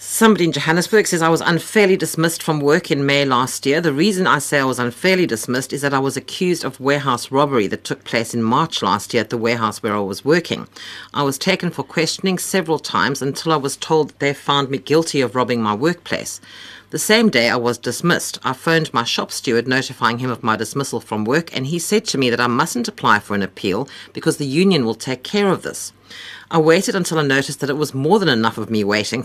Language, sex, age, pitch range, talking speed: English, female, 50-69, 115-160 Hz, 240 wpm